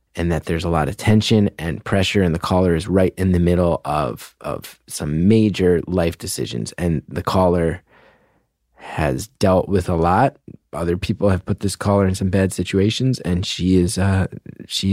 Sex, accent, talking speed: male, American, 180 wpm